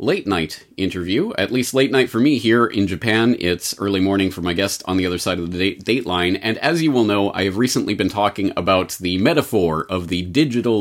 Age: 30-49